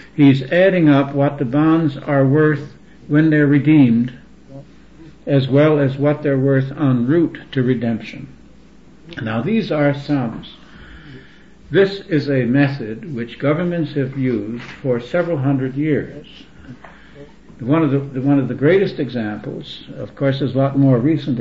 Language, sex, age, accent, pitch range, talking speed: English, male, 60-79, American, 130-150 Hz, 145 wpm